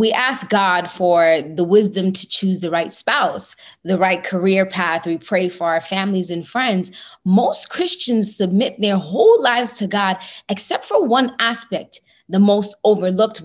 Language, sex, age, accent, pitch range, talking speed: English, female, 20-39, American, 180-235 Hz, 165 wpm